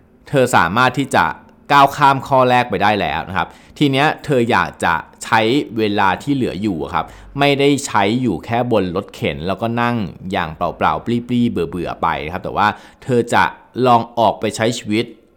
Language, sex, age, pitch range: Thai, male, 20-39, 95-125 Hz